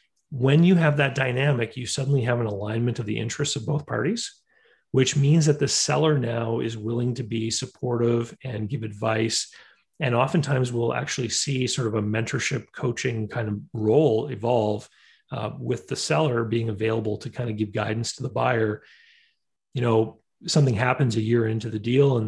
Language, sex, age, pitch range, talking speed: English, male, 30-49, 115-145 Hz, 185 wpm